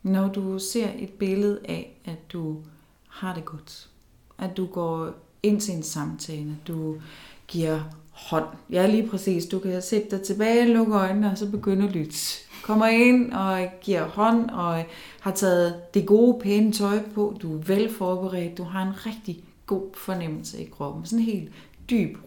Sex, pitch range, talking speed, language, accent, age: female, 155-200 Hz, 175 wpm, Danish, native, 30-49